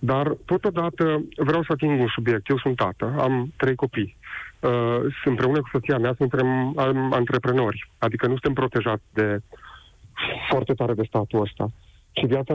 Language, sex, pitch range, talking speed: Romanian, male, 115-135 Hz, 160 wpm